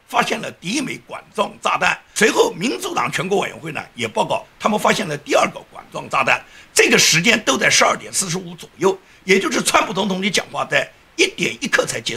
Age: 50-69